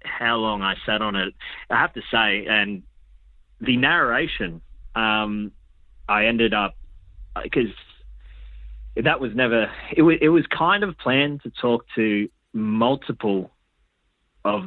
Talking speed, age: 135 wpm, 30-49